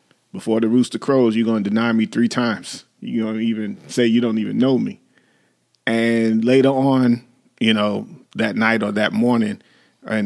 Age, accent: 40-59, American